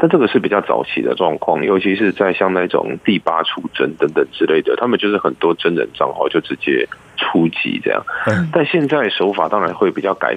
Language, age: Chinese, 20-39